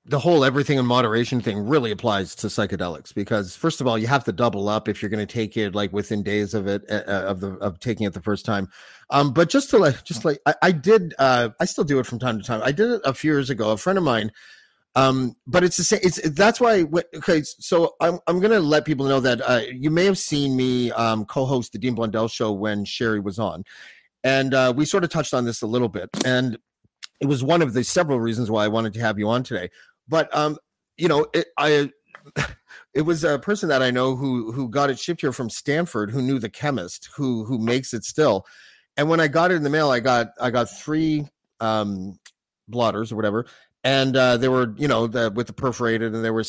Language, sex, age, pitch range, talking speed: English, male, 30-49, 110-150 Hz, 245 wpm